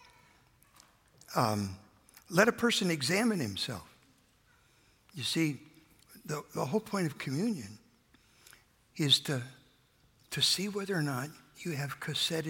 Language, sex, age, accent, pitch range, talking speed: English, male, 60-79, American, 125-180 Hz, 115 wpm